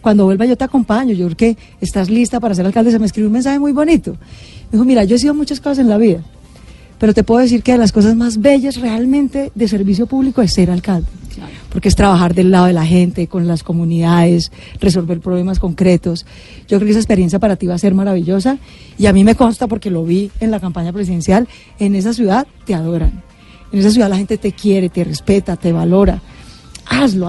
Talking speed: 225 wpm